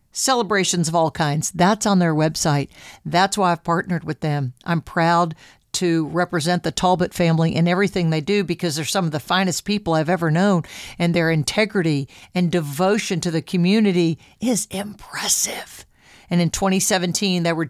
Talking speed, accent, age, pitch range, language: 170 wpm, American, 50-69, 165-210 Hz, English